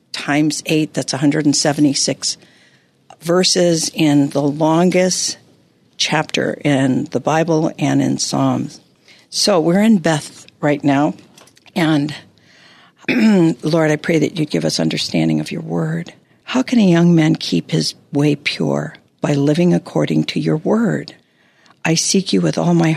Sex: female